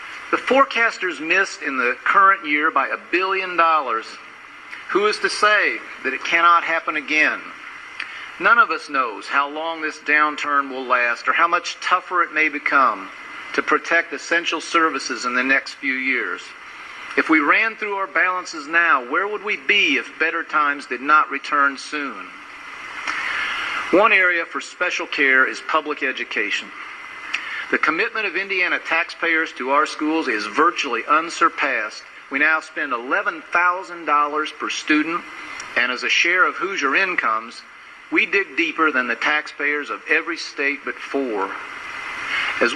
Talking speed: 150 wpm